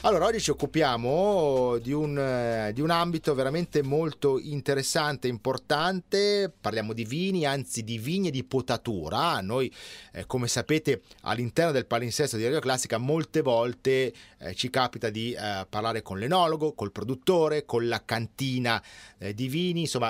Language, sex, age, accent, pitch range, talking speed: Italian, male, 30-49, native, 115-160 Hz, 150 wpm